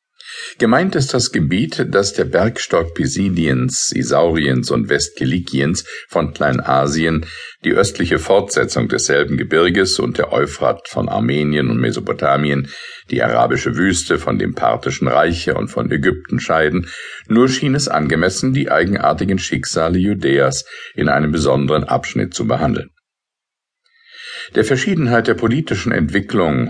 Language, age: German, 50-69